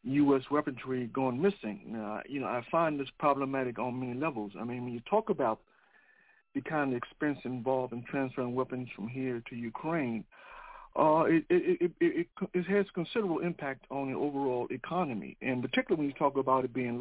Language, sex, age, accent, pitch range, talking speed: English, male, 60-79, American, 130-170 Hz, 190 wpm